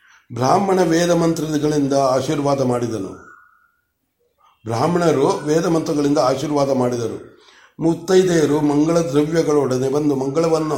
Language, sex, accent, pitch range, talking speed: Kannada, male, native, 135-165 Hz, 80 wpm